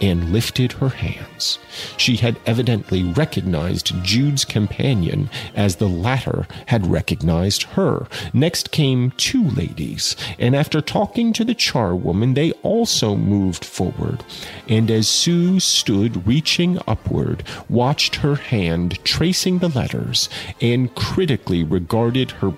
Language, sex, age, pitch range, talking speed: English, male, 40-59, 100-145 Hz, 120 wpm